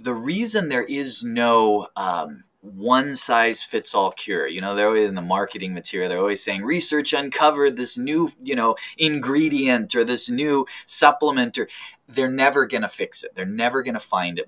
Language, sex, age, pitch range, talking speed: English, male, 30-49, 100-170 Hz, 170 wpm